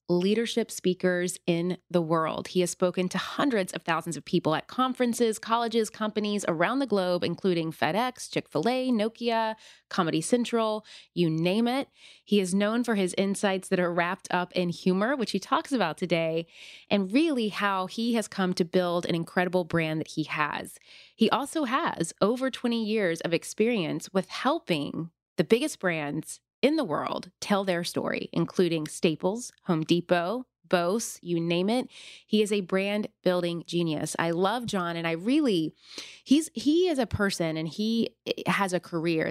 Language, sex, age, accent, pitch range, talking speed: English, female, 30-49, American, 165-220 Hz, 170 wpm